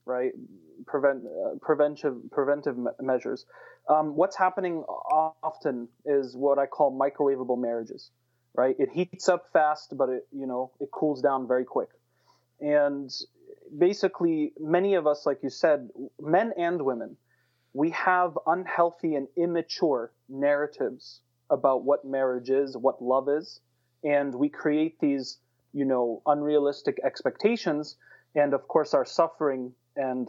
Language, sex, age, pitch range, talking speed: English, male, 30-49, 135-180 Hz, 135 wpm